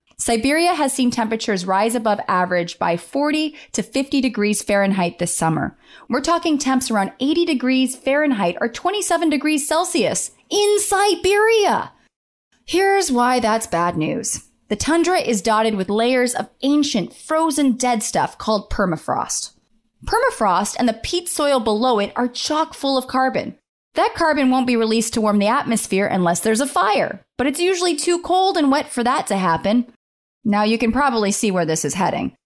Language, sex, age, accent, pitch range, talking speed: English, female, 30-49, American, 210-305 Hz, 170 wpm